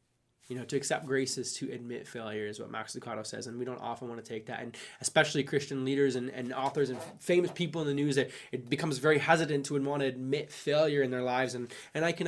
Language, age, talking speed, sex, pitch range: English, 20-39, 265 wpm, male, 125-145 Hz